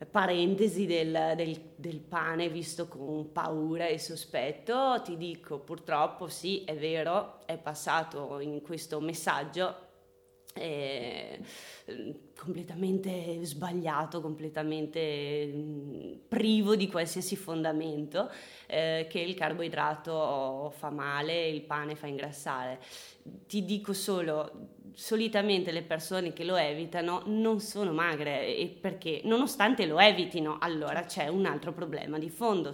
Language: Italian